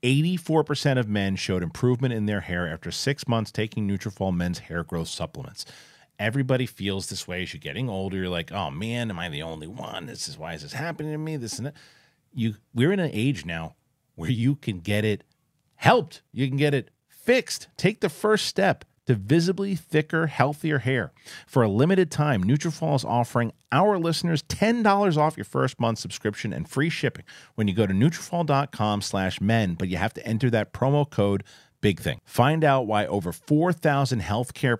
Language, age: English, 40-59